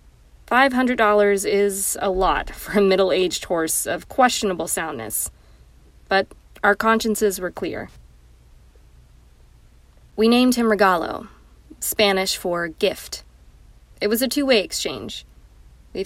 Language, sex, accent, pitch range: English, female, American, 165-215 Hz